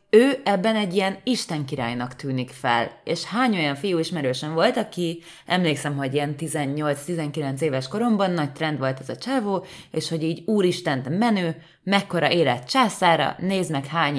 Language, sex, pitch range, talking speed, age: Hungarian, female, 145-190 Hz, 155 wpm, 20-39